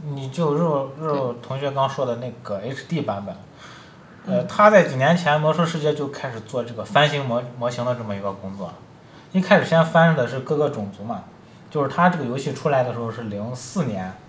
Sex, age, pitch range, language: male, 20-39, 120-160 Hz, Chinese